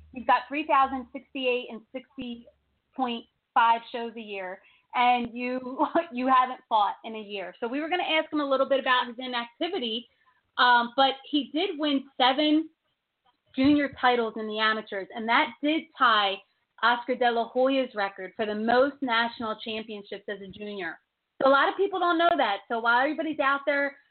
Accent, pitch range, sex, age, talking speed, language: American, 220-275 Hz, female, 30-49, 170 wpm, English